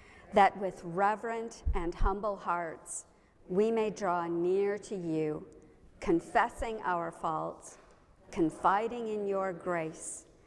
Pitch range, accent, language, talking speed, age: 175-230 Hz, American, English, 110 wpm, 50-69